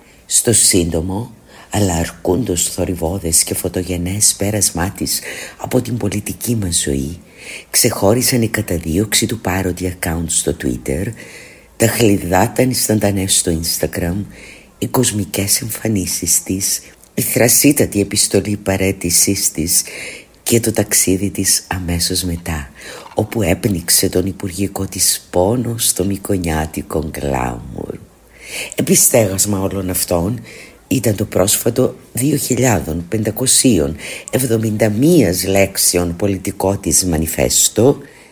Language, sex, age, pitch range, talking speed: Greek, female, 50-69, 90-110 Hz, 95 wpm